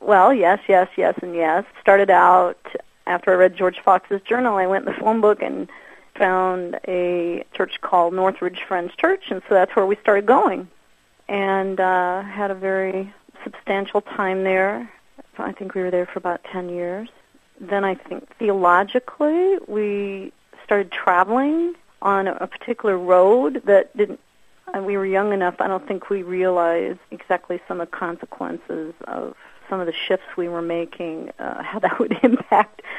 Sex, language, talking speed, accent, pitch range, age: female, English, 170 wpm, American, 175-200 Hz, 40-59